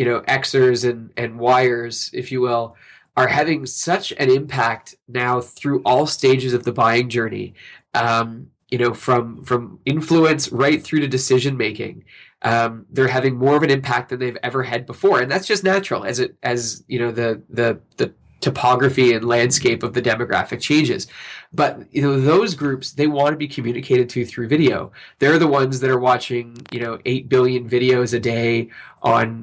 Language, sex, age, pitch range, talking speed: English, male, 20-39, 120-140 Hz, 185 wpm